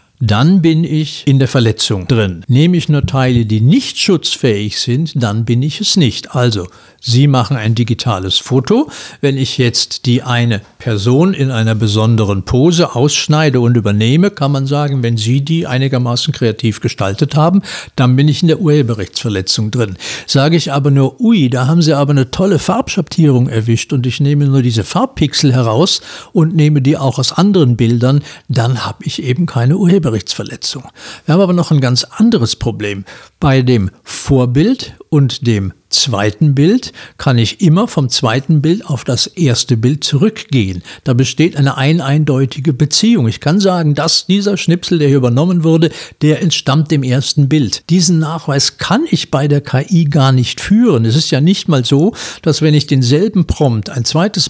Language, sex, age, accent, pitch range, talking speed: German, male, 60-79, German, 125-160 Hz, 175 wpm